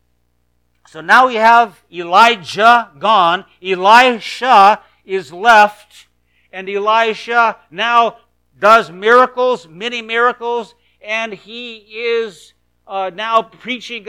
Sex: male